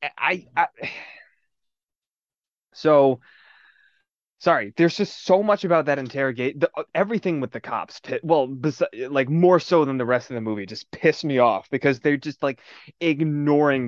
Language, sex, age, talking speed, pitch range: English, male, 20-39, 145 wpm, 125-170 Hz